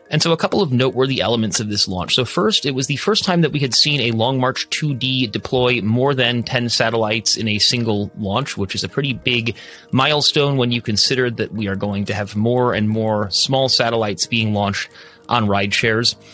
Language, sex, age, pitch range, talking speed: English, male, 30-49, 110-140 Hz, 215 wpm